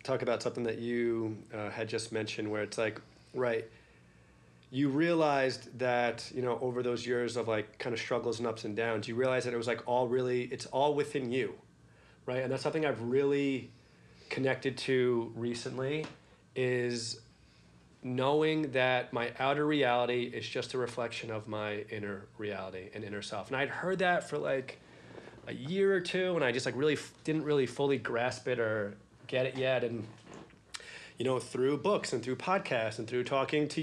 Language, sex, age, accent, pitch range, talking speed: English, male, 30-49, American, 115-140 Hz, 185 wpm